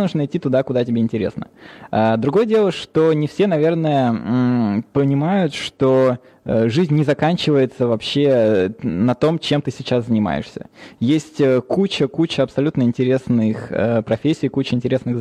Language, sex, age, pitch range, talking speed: Russian, male, 20-39, 115-150 Hz, 120 wpm